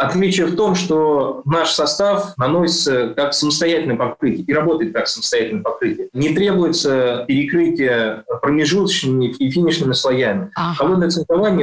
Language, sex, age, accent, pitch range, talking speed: Russian, male, 20-39, native, 125-170 Hz, 125 wpm